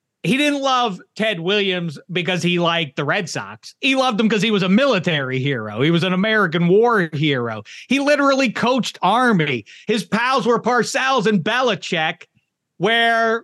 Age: 40-59